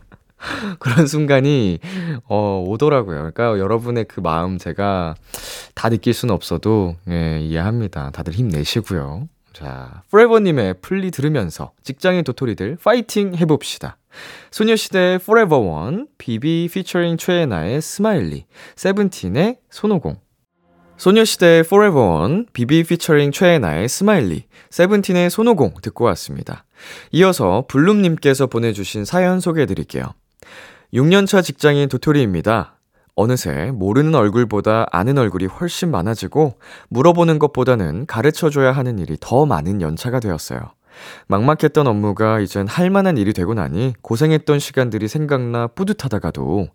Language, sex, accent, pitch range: Korean, male, native, 100-170 Hz